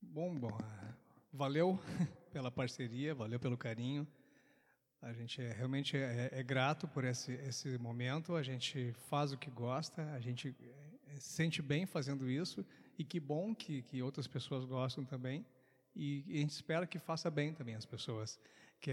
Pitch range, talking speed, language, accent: 130-160 Hz, 170 wpm, Portuguese, Brazilian